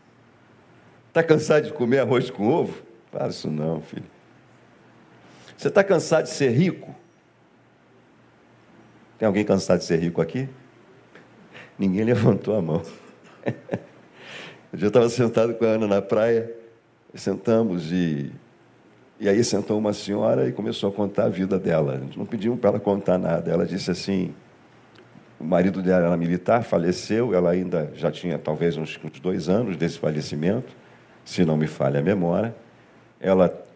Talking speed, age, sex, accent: 150 wpm, 50-69, male, Brazilian